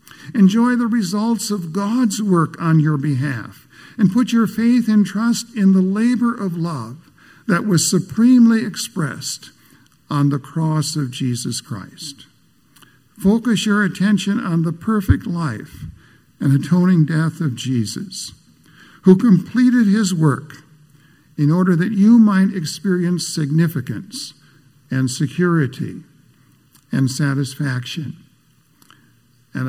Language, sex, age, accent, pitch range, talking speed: English, male, 60-79, American, 130-195 Hz, 115 wpm